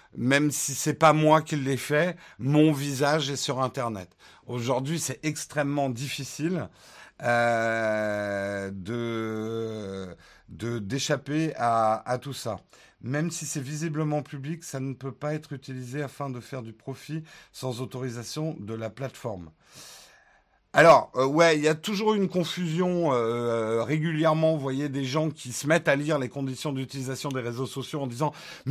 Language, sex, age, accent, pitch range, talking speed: French, male, 50-69, French, 125-165 Hz, 155 wpm